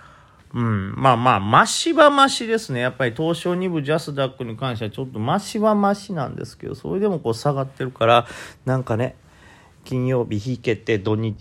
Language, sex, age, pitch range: Japanese, male, 40-59, 115-180 Hz